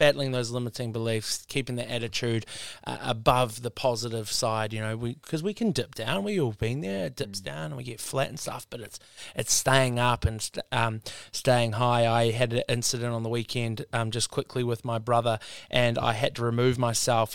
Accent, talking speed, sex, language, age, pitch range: Australian, 215 wpm, male, English, 20-39, 115-145 Hz